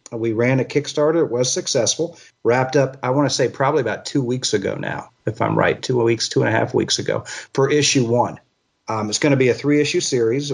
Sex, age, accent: male, 40-59, American